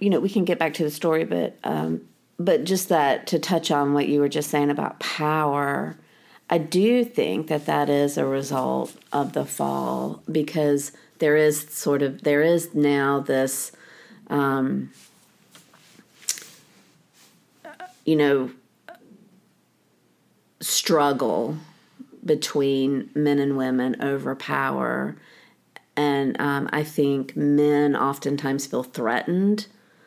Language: English